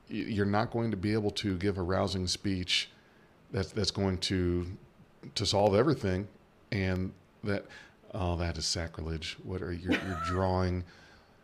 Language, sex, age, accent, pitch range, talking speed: English, male, 40-59, American, 90-110 Hz, 155 wpm